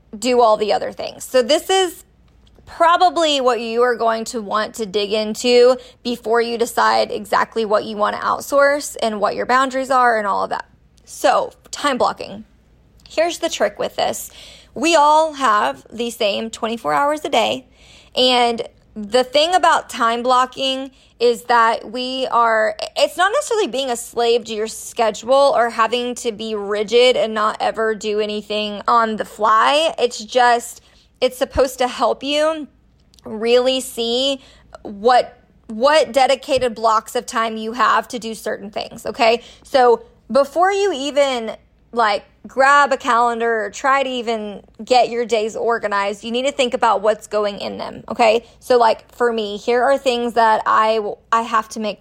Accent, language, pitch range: American, English, 220-265 Hz